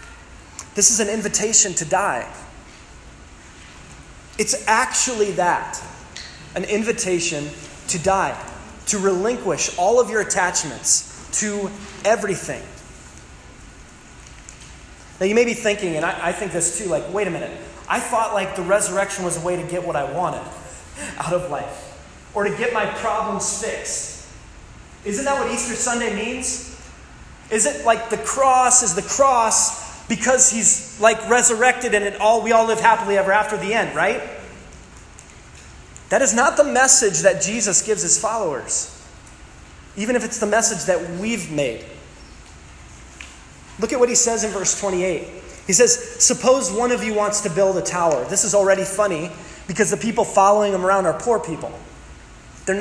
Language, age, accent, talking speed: English, 20-39, American, 155 wpm